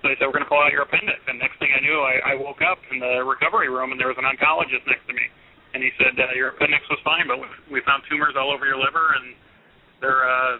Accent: American